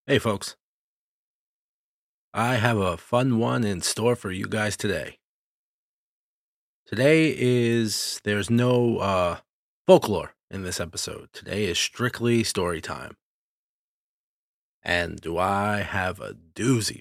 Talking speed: 115 wpm